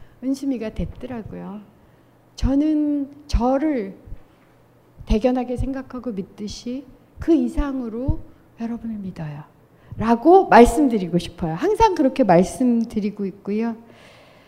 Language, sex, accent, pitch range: Korean, female, native, 210-310 Hz